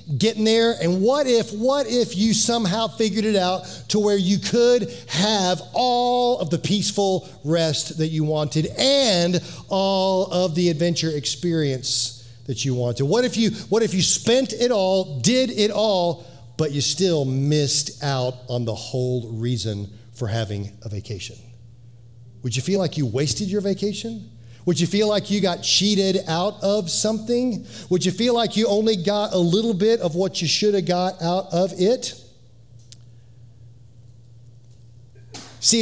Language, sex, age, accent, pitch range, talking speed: English, male, 40-59, American, 125-200 Hz, 160 wpm